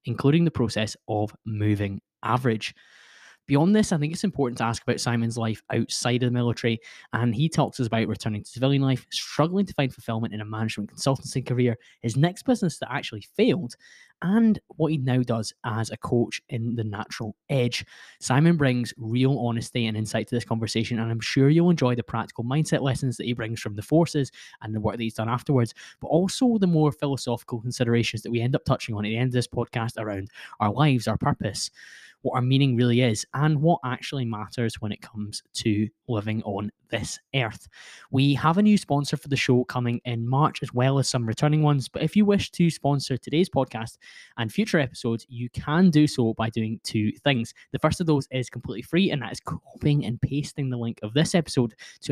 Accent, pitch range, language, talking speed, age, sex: British, 115-145 Hz, English, 210 wpm, 10-29, male